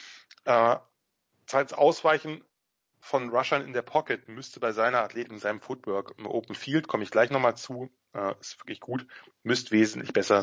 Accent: German